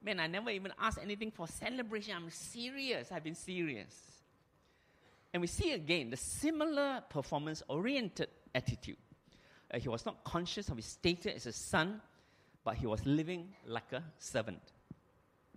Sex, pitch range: male, 145-220 Hz